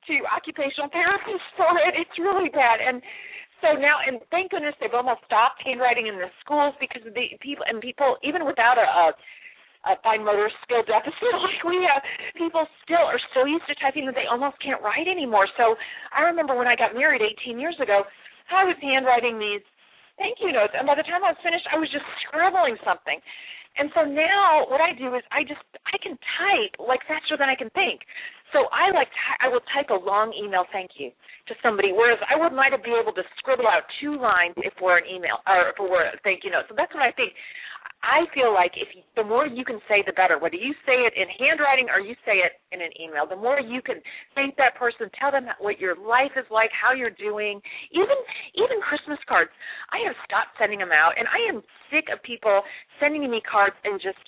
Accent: American